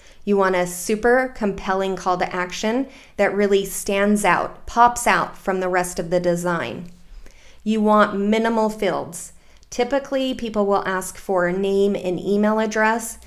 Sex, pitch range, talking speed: female, 185-210 Hz, 155 wpm